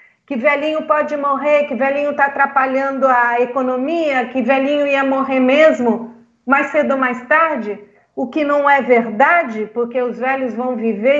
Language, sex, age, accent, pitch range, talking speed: Portuguese, female, 50-69, Brazilian, 235-315 Hz, 160 wpm